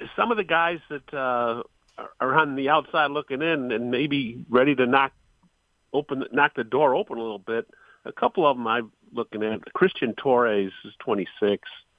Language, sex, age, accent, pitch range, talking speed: English, male, 50-69, American, 105-140 Hz, 180 wpm